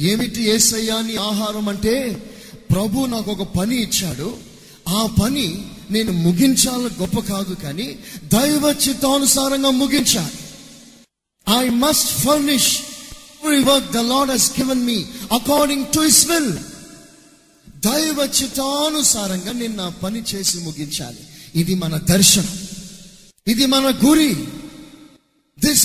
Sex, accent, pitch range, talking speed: male, native, 200-280 Hz, 100 wpm